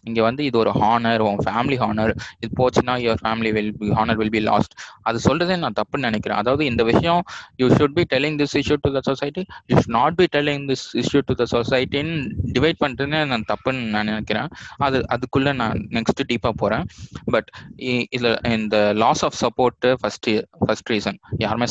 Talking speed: 165 wpm